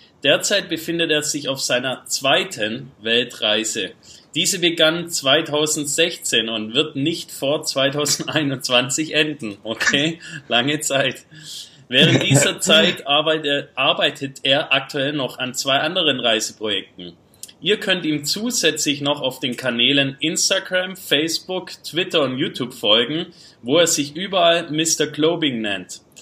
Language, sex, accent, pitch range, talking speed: German, male, German, 135-165 Hz, 120 wpm